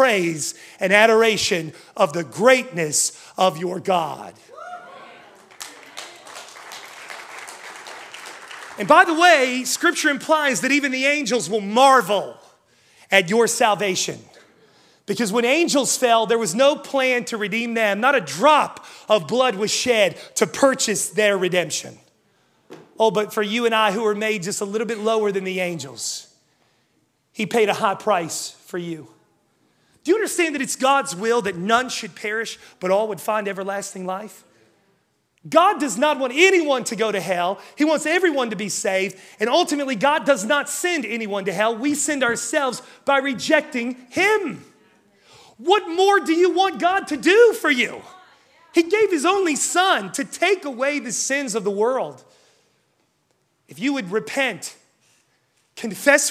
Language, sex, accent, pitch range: English, male, American, 210-290 Hz